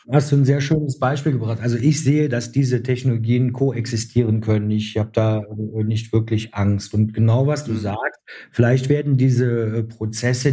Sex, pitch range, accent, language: male, 115-135 Hz, German, German